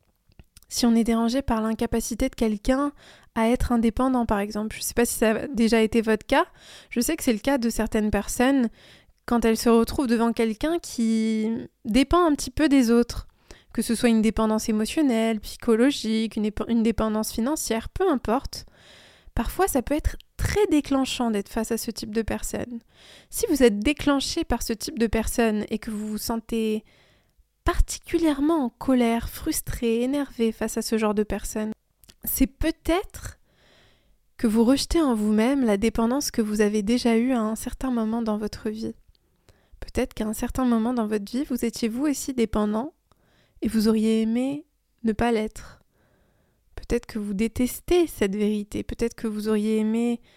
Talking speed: 175 wpm